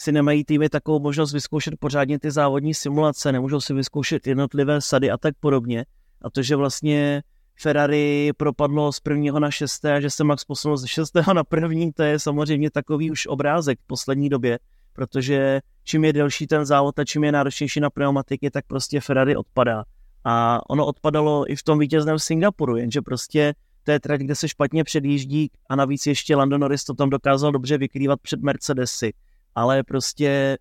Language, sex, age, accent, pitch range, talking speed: Czech, male, 30-49, native, 130-150 Hz, 180 wpm